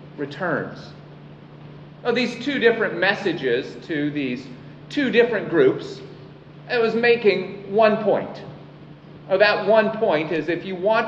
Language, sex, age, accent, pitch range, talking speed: English, male, 40-59, American, 155-220 Hz, 125 wpm